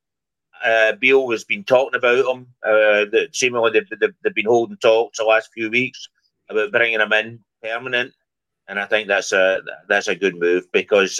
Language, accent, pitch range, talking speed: English, British, 100-150 Hz, 190 wpm